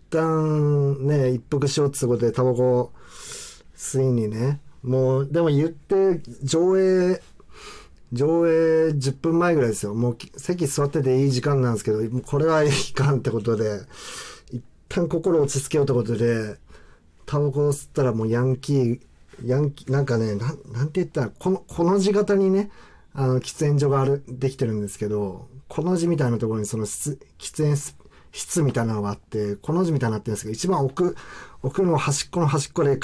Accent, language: native, Japanese